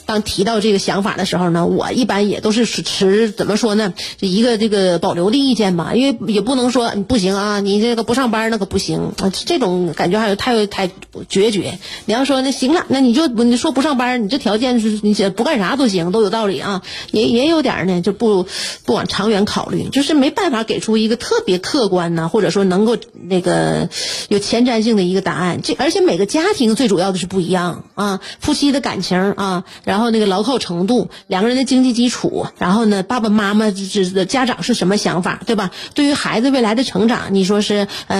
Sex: female